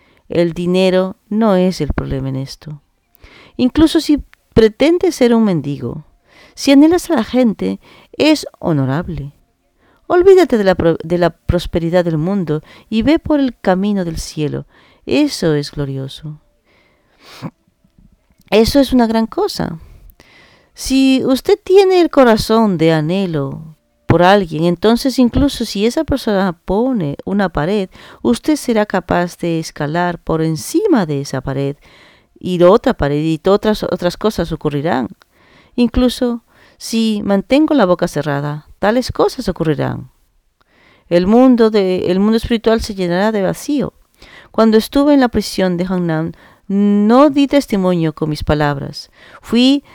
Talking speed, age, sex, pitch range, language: 135 wpm, 40-59, female, 160-250 Hz, English